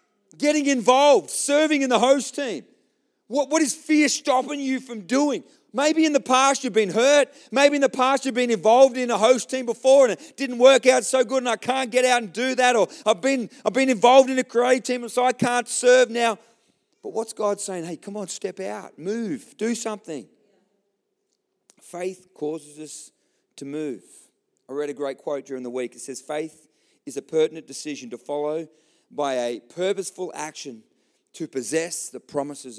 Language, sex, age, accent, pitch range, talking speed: English, male, 40-59, Australian, 185-265 Hz, 195 wpm